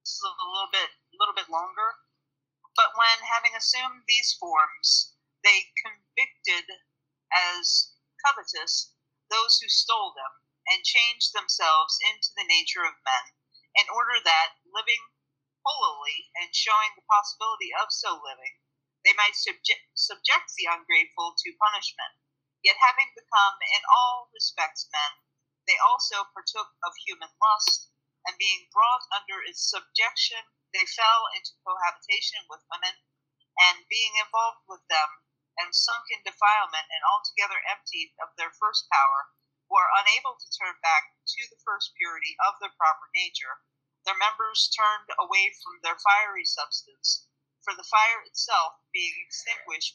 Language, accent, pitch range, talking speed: English, American, 160-235 Hz, 140 wpm